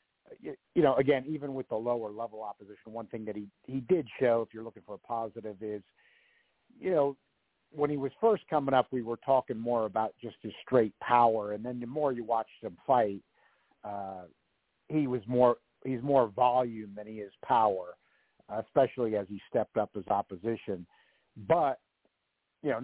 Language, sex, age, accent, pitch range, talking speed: English, male, 50-69, American, 105-130 Hz, 180 wpm